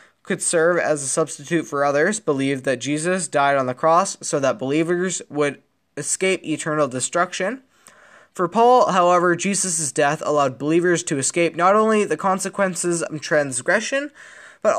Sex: male